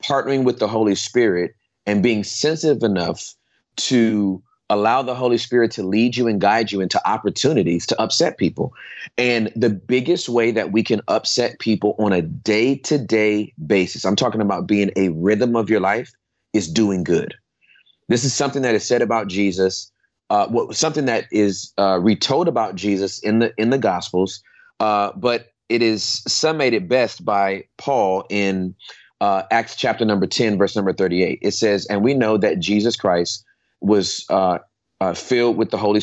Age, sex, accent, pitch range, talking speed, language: 30-49, male, American, 100-125 Hz, 175 wpm, English